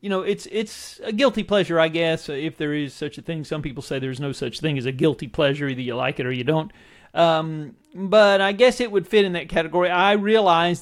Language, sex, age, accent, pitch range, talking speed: English, male, 40-59, American, 145-185 Hz, 250 wpm